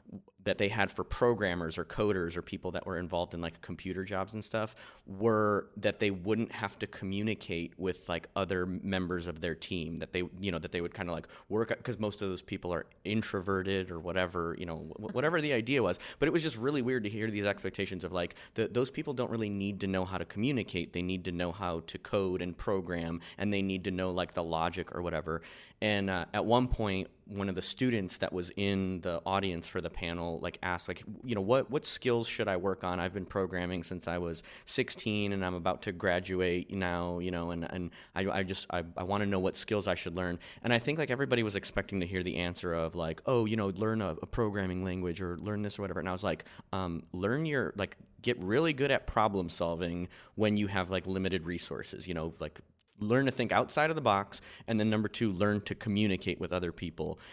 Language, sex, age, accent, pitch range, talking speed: English, male, 30-49, American, 90-105 Hz, 235 wpm